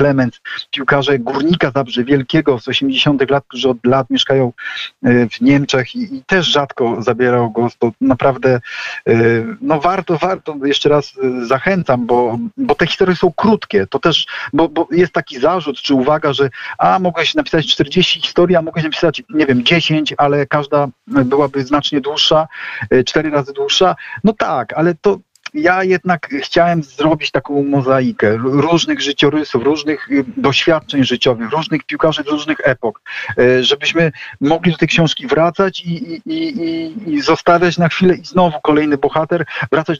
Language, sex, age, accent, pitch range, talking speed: Polish, male, 40-59, native, 135-170 Hz, 145 wpm